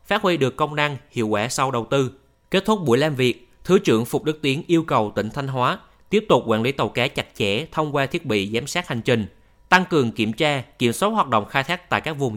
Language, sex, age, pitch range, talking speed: Vietnamese, male, 20-39, 115-155 Hz, 260 wpm